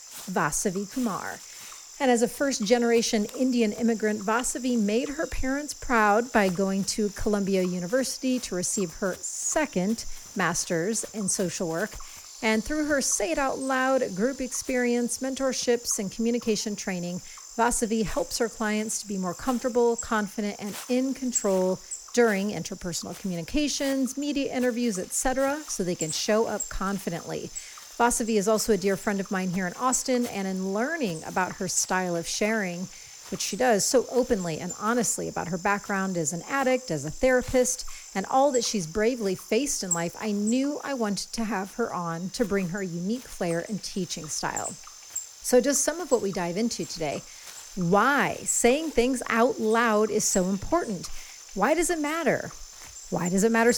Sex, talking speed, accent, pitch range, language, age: female, 165 wpm, American, 195-250 Hz, English, 40-59